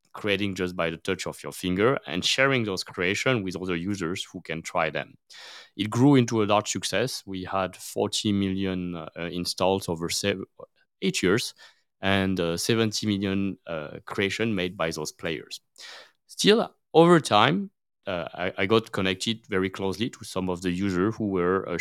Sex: male